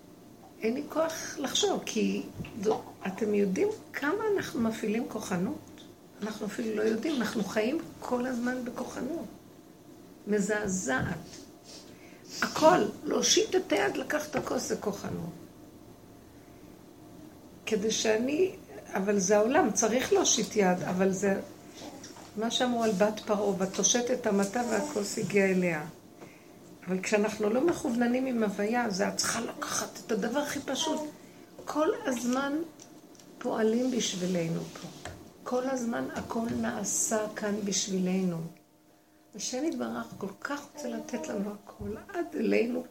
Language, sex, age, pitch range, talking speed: Hebrew, female, 50-69, 200-265 Hz, 125 wpm